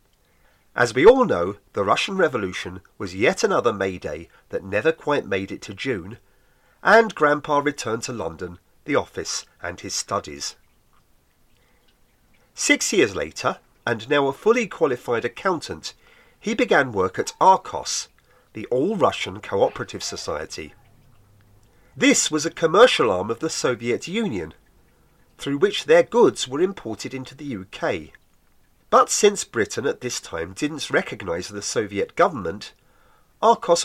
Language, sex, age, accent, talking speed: English, male, 40-59, British, 135 wpm